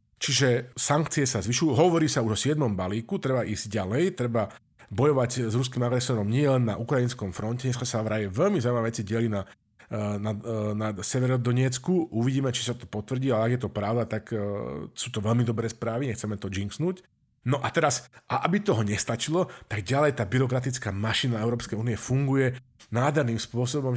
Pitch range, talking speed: 110-135 Hz, 180 wpm